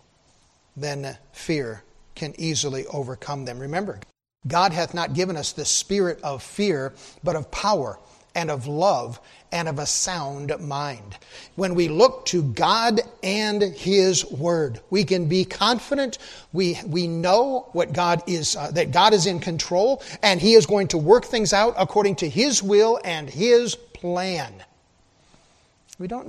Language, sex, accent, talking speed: English, male, American, 155 wpm